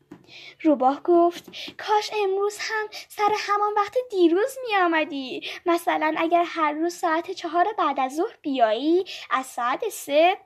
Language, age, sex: Persian, 10-29, female